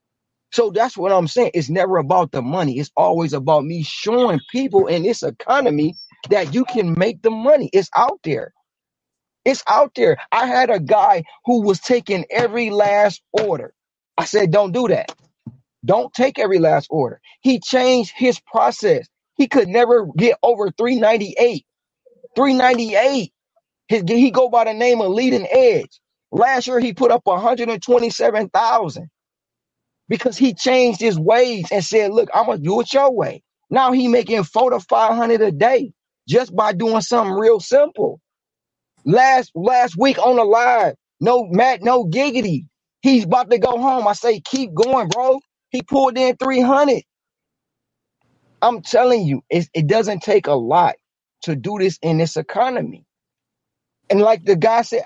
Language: English